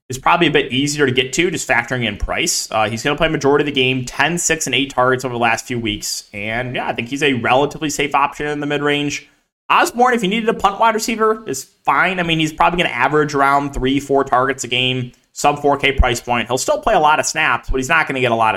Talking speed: 270 wpm